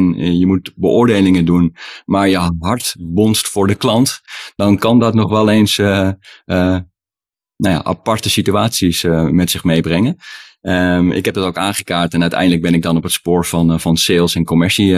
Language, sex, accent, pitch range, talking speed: Dutch, male, Dutch, 90-105 Hz, 190 wpm